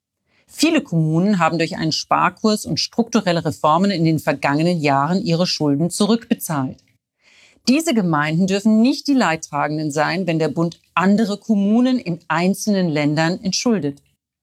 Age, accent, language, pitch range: 40-59, German, German, 160-220 Hz